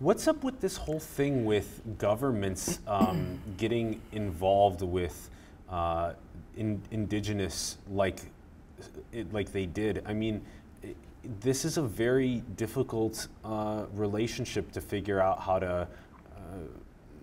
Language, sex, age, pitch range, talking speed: English, male, 30-49, 95-110 Hz, 120 wpm